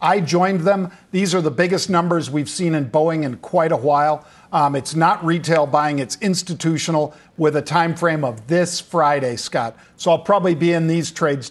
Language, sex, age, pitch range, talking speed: English, male, 50-69, 150-175 Hz, 200 wpm